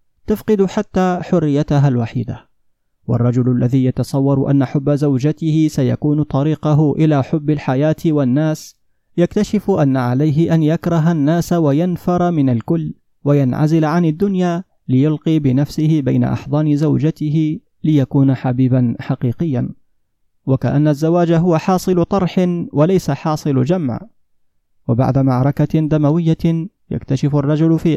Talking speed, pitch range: 105 wpm, 135-170 Hz